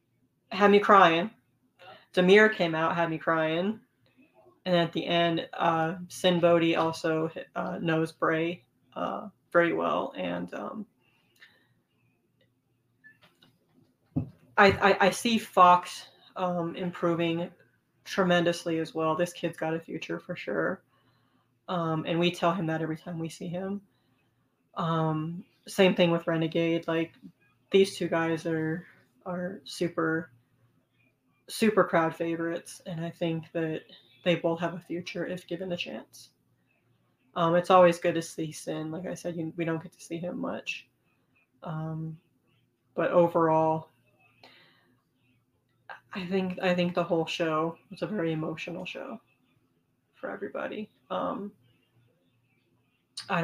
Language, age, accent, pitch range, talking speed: English, 20-39, American, 160-180 Hz, 130 wpm